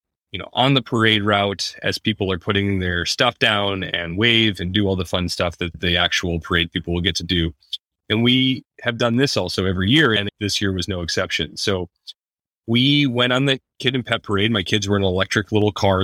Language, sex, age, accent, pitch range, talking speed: English, male, 30-49, American, 95-115 Hz, 220 wpm